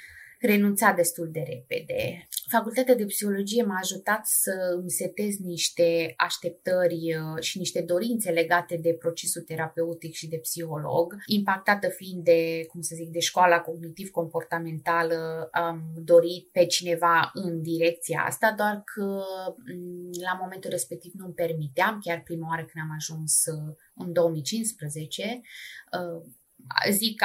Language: Romanian